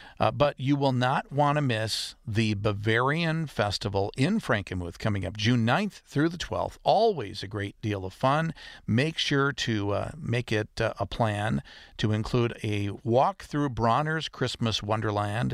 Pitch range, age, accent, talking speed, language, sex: 105-135 Hz, 50-69, American, 165 wpm, English, male